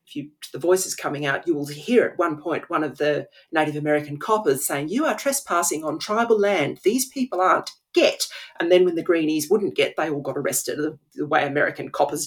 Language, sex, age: English, female, 40-59